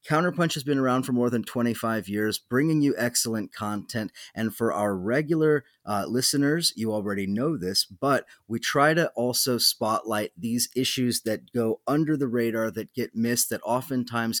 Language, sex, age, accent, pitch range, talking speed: English, male, 30-49, American, 105-125 Hz, 170 wpm